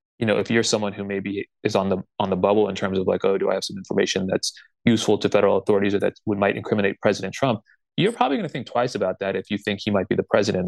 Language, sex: English, male